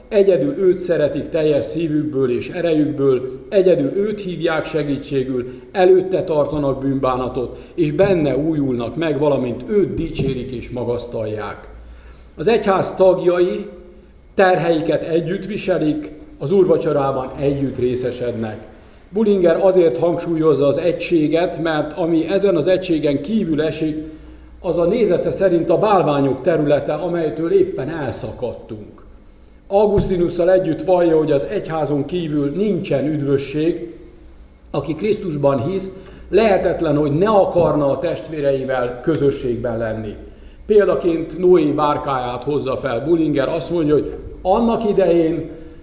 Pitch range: 135-180 Hz